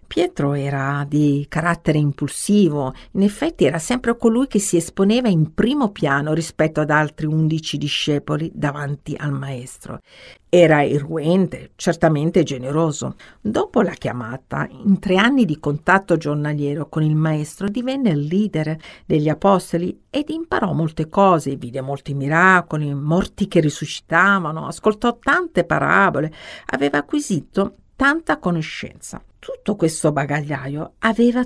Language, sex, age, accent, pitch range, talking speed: Italian, female, 50-69, native, 145-195 Hz, 125 wpm